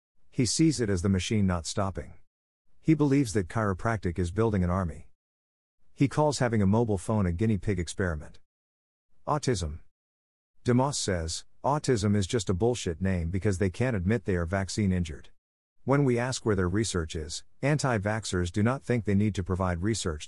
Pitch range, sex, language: 85-115 Hz, male, English